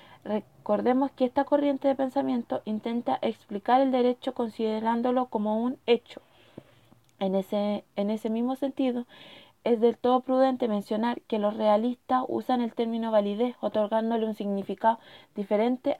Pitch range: 215-255 Hz